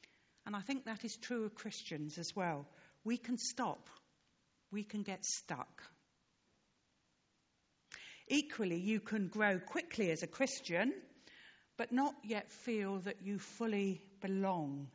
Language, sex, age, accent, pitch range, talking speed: English, female, 50-69, British, 170-230 Hz, 135 wpm